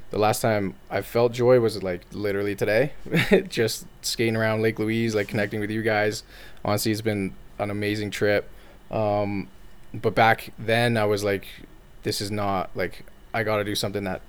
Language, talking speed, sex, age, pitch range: English, 180 wpm, male, 20-39, 100-115 Hz